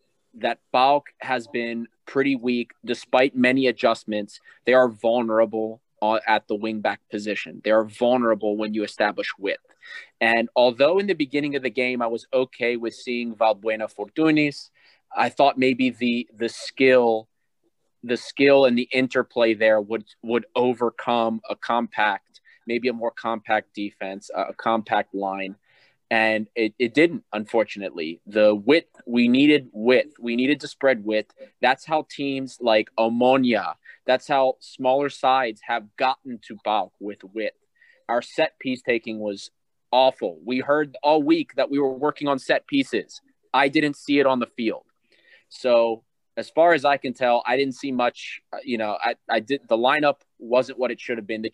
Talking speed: 165 wpm